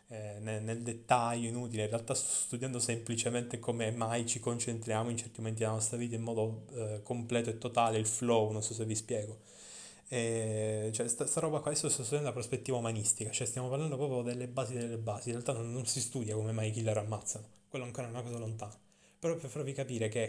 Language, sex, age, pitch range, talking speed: Italian, male, 20-39, 110-145 Hz, 215 wpm